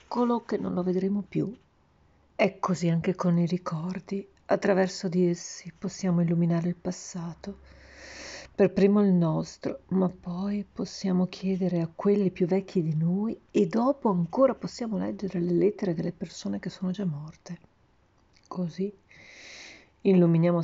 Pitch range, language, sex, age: 175-205 Hz, Italian, female, 40-59